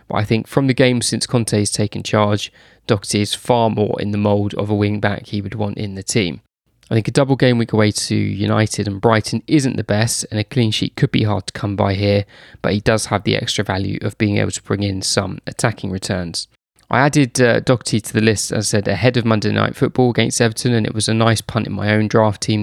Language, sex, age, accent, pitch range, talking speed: English, male, 20-39, British, 105-120 Hz, 255 wpm